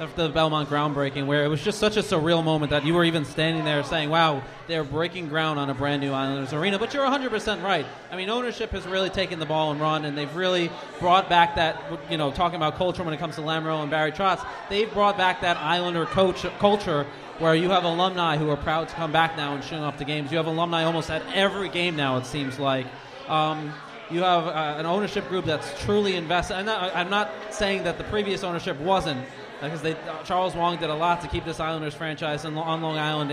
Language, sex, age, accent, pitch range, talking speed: English, male, 30-49, American, 155-180 Hz, 240 wpm